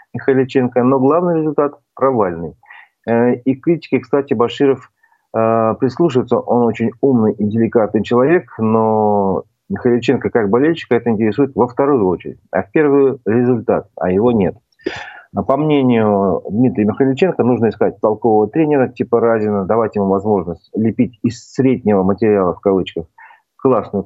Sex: male